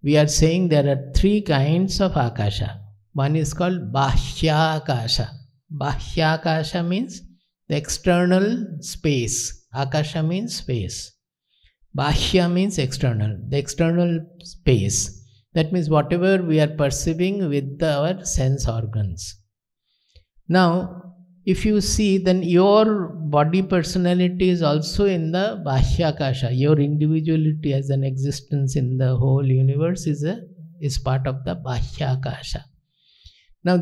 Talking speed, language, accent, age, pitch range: 125 wpm, English, Indian, 50-69, 135-180 Hz